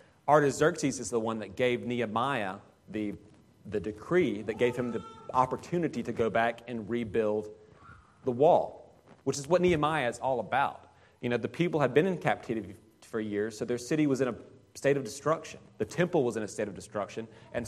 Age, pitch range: 40-59, 110-140 Hz